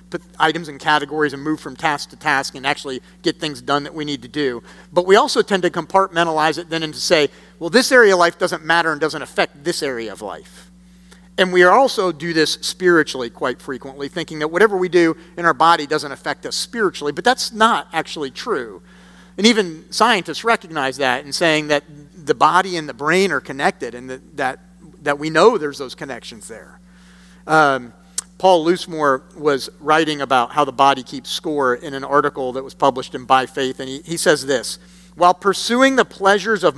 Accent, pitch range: American, 145-180 Hz